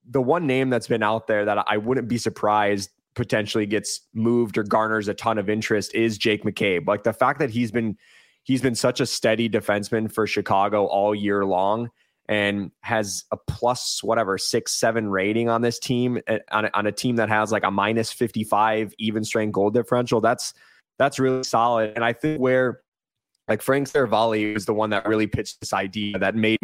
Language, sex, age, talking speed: English, male, 20-39, 200 wpm